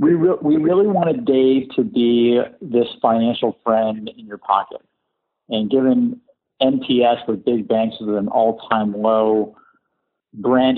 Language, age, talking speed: English, 50-69, 145 wpm